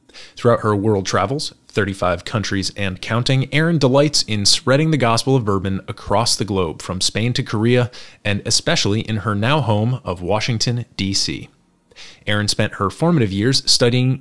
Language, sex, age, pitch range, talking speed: English, male, 30-49, 100-135 Hz, 160 wpm